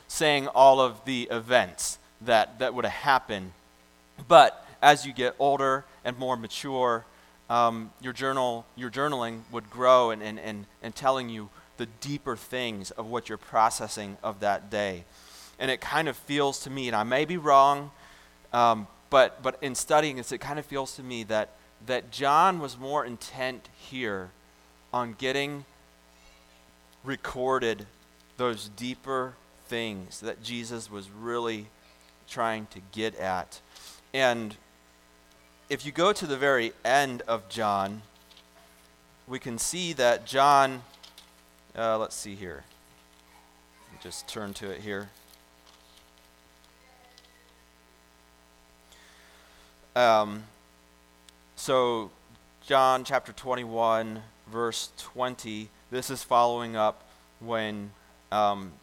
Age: 30-49